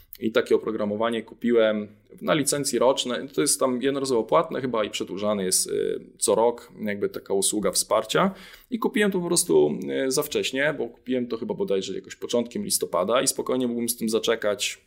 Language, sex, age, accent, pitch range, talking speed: Polish, male, 20-39, native, 100-125 Hz, 175 wpm